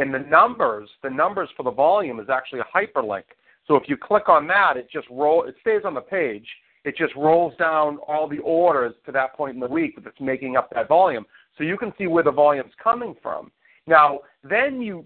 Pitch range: 140-200 Hz